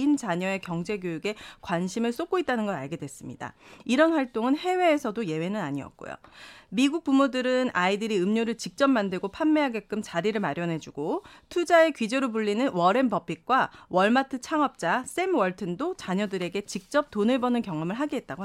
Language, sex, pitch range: Korean, female, 190-280 Hz